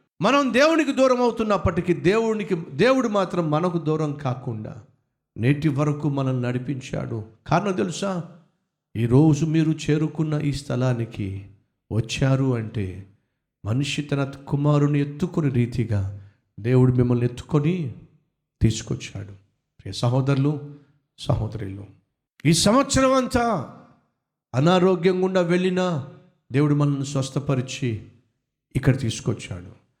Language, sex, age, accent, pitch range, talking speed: Telugu, male, 50-69, native, 120-170 Hz, 90 wpm